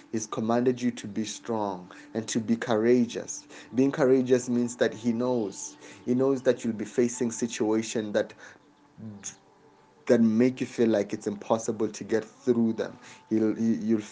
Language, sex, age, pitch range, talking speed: English, male, 30-49, 105-120 Hz, 155 wpm